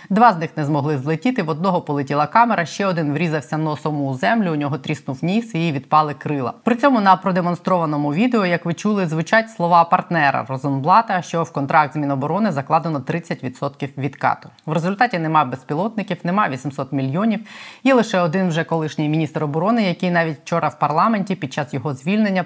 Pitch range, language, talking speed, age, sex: 145-185 Hz, Ukrainian, 180 wpm, 20-39, female